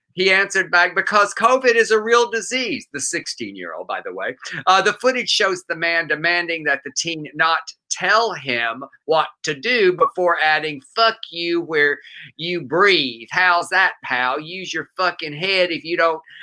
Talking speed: 170 wpm